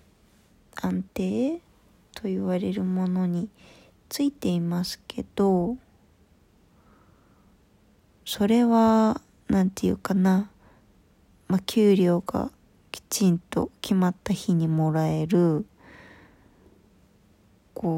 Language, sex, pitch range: Japanese, female, 170-205 Hz